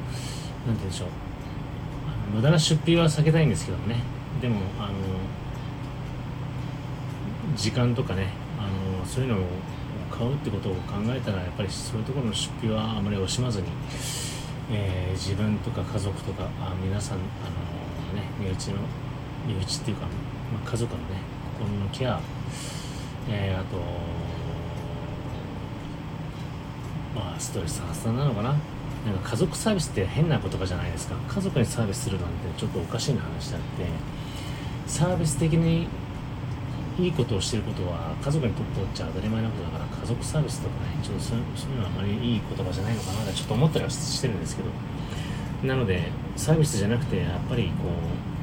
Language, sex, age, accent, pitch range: Japanese, male, 30-49, native, 100-140 Hz